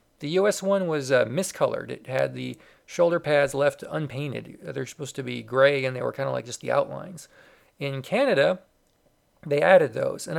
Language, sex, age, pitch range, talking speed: English, male, 40-59, 135-190 Hz, 190 wpm